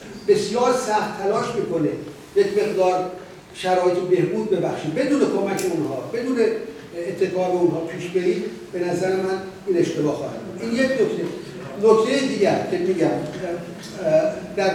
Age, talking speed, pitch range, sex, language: 50-69, 125 wpm, 180-235 Hz, male, Persian